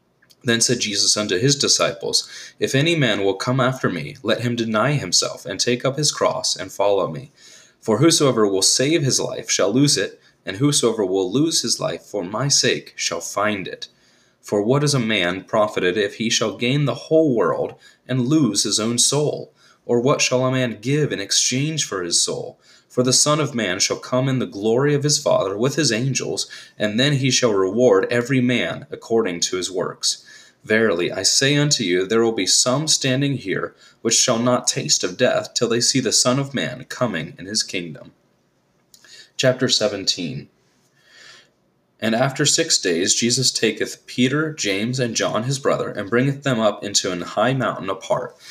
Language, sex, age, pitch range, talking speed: English, male, 30-49, 110-140 Hz, 190 wpm